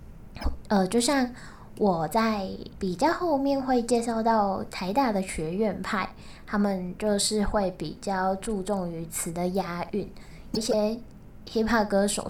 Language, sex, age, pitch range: Chinese, female, 10-29, 190-230 Hz